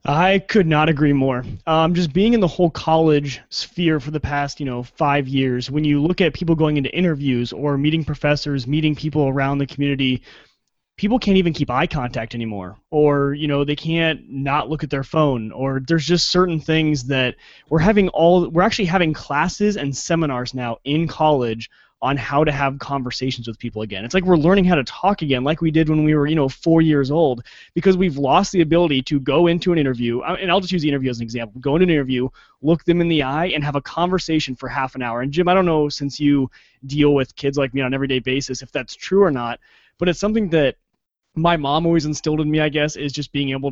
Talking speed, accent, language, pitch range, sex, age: 235 wpm, American, English, 135-165 Hz, male, 20-39